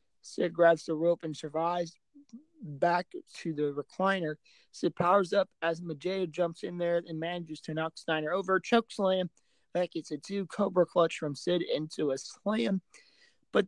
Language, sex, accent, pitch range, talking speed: English, male, American, 160-190 Hz, 160 wpm